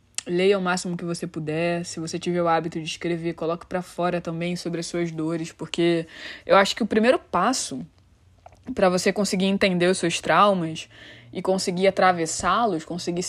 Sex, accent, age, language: female, Brazilian, 20-39, Portuguese